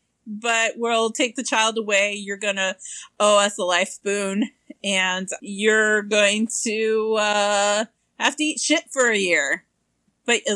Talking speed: 160 wpm